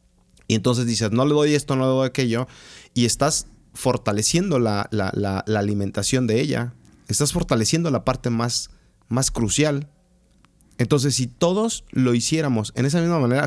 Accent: Mexican